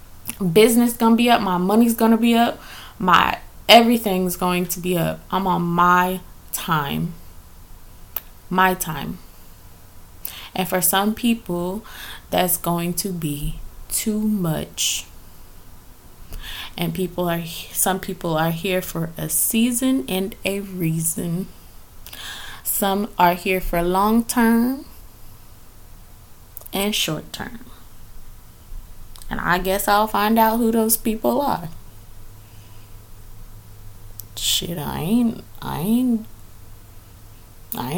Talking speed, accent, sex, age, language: 105 wpm, American, female, 20-39, English